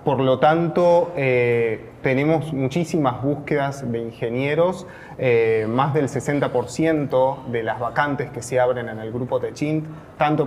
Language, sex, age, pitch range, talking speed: Spanish, male, 20-39, 125-155 Hz, 140 wpm